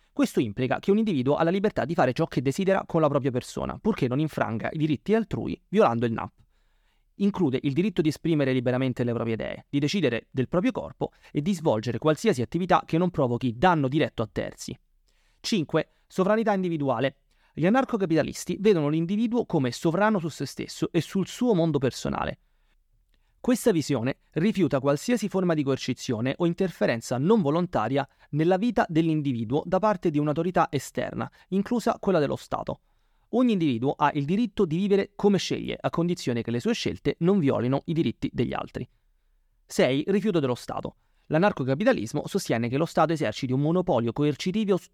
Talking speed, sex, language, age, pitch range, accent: 170 wpm, male, Italian, 30-49, 135-195 Hz, native